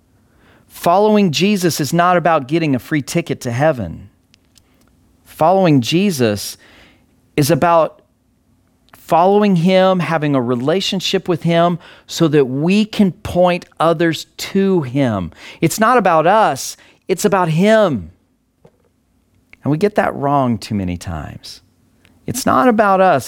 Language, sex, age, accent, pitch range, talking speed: English, male, 40-59, American, 125-205 Hz, 125 wpm